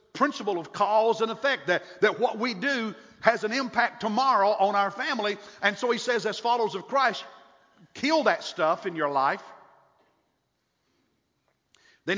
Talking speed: 160 wpm